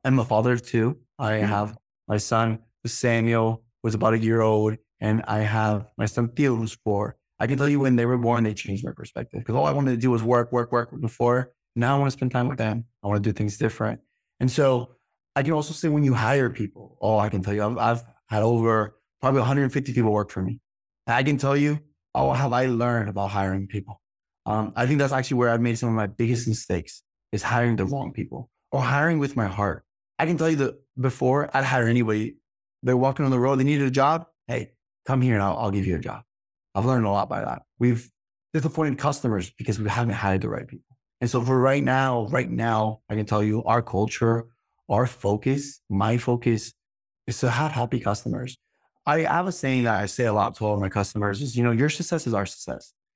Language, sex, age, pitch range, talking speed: English, male, 20-39, 110-130 Hz, 235 wpm